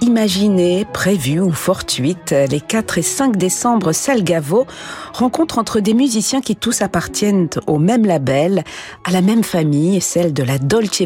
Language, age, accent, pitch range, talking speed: French, 50-69, French, 150-205 Hz, 150 wpm